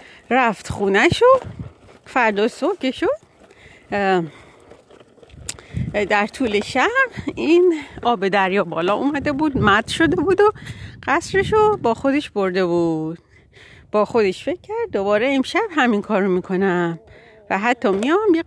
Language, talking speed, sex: Persian, 120 wpm, female